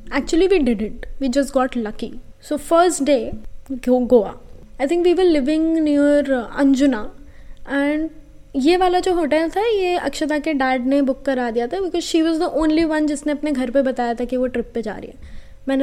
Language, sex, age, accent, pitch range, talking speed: English, female, 20-39, Indian, 255-320 Hz, 165 wpm